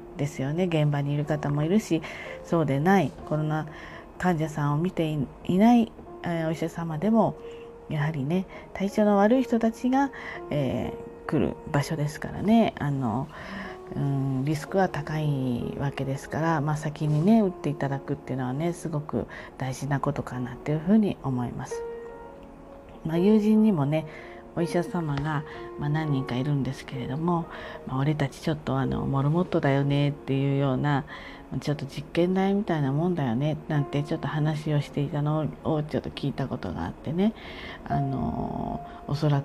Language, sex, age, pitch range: Japanese, female, 40-59, 140-180 Hz